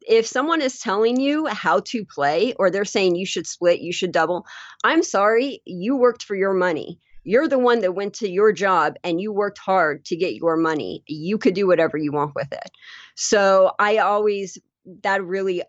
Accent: American